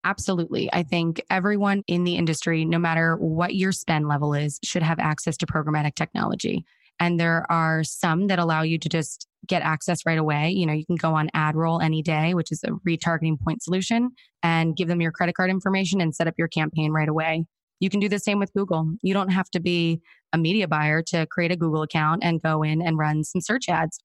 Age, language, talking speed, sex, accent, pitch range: 20-39, English, 225 wpm, female, American, 160-185 Hz